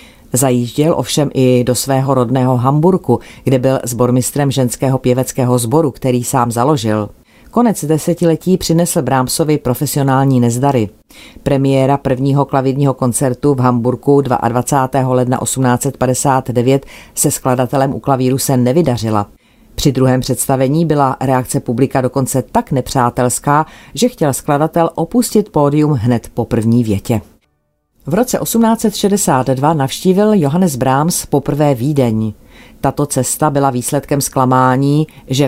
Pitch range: 125-150 Hz